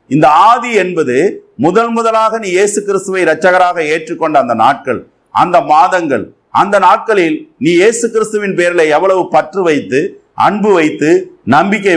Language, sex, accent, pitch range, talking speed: Tamil, male, native, 155-220 Hz, 120 wpm